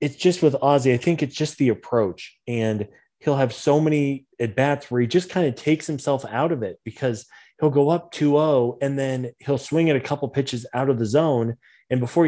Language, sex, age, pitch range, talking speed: English, male, 20-39, 115-140 Hz, 230 wpm